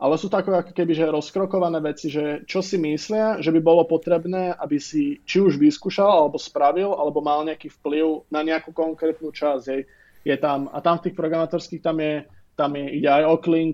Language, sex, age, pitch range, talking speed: Slovak, male, 20-39, 145-165 Hz, 190 wpm